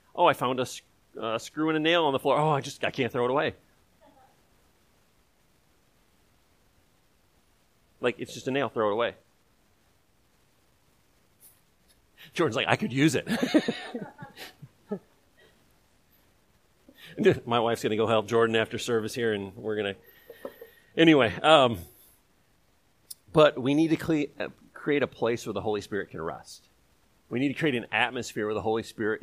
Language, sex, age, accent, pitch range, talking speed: English, male, 40-59, American, 110-150 Hz, 150 wpm